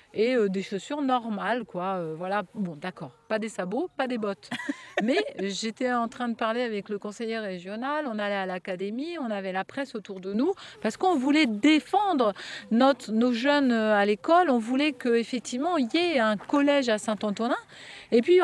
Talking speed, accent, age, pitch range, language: 190 wpm, French, 40-59, 195-275 Hz, French